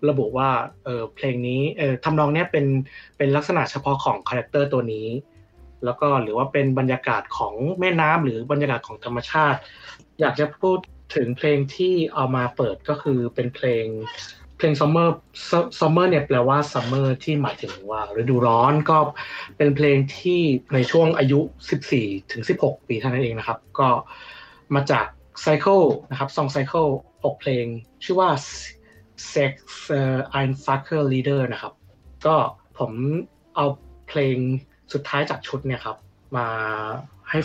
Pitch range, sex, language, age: 120-150 Hz, male, Thai, 20-39